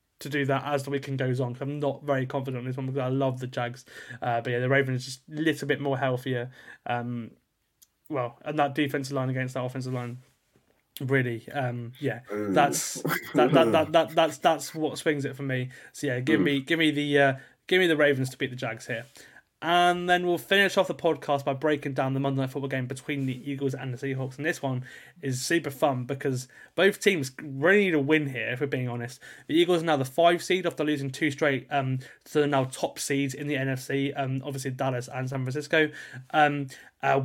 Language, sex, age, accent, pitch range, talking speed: English, male, 20-39, British, 130-150 Hz, 230 wpm